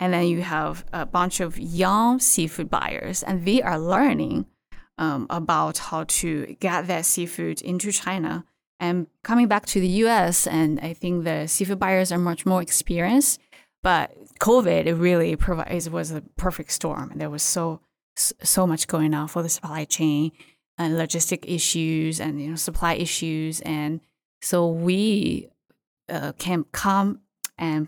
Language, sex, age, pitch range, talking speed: English, female, 20-39, 160-185 Hz, 165 wpm